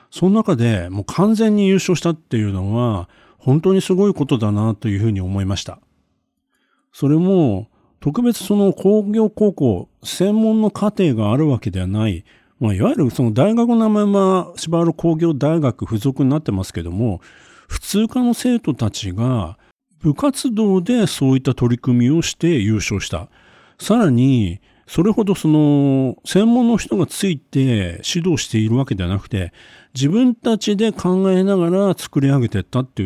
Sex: male